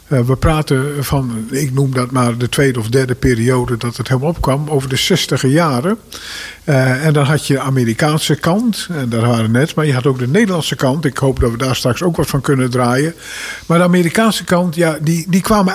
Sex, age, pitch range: male, 50-69, 125-165 Hz